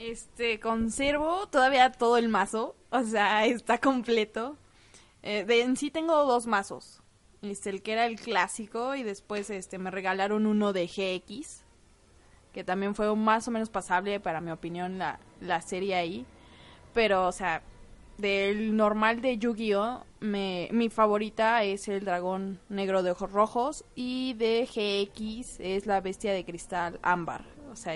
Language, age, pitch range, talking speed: Spanish, 20-39, 195-245 Hz, 155 wpm